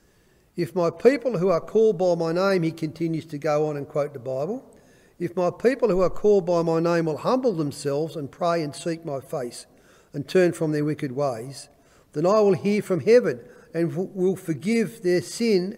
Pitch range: 155-190 Hz